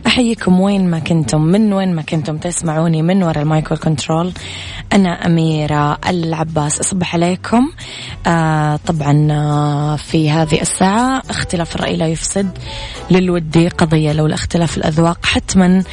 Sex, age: female, 20-39